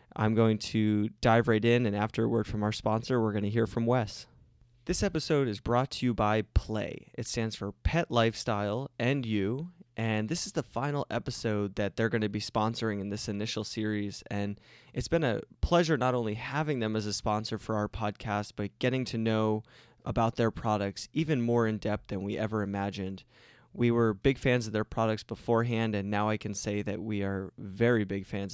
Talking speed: 210 wpm